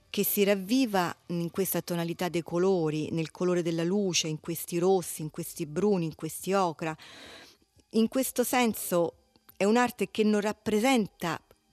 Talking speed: 150 wpm